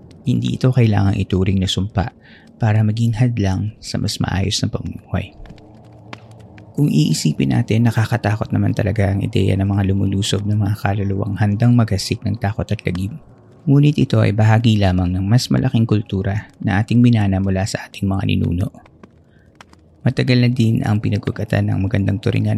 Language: Filipino